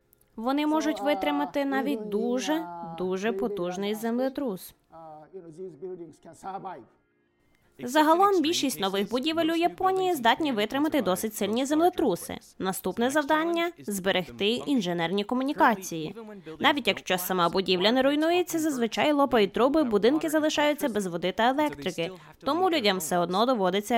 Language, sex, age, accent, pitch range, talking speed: Ukrainian, female, 20-39, native, 195-295 Hz, 115 wpm